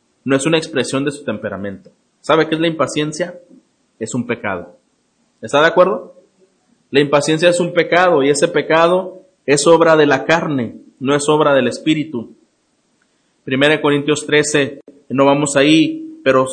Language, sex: Spanish, male